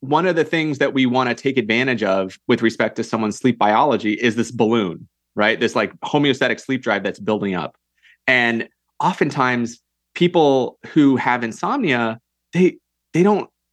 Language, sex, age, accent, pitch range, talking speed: English, male, 30-49, American, 115-150 Hz, 165 wpm